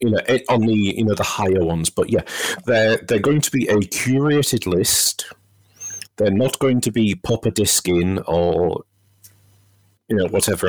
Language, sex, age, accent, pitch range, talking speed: English, male, 40-59, British, 90-105 Hz, 185 wpm